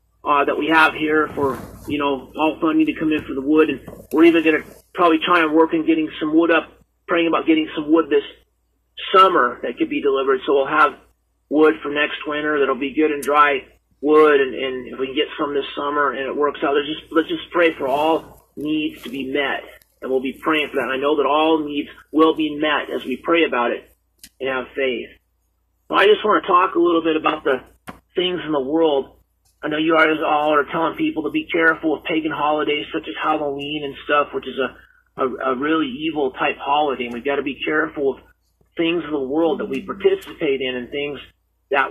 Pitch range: 140-160 Hz